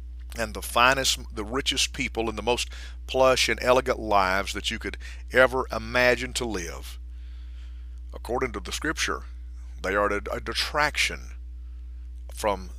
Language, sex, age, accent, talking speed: English, male, 50-69, American, 135 wpm